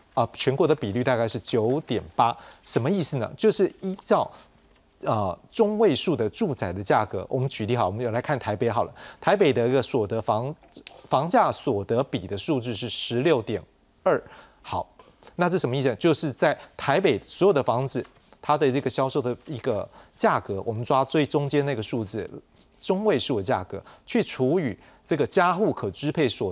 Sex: male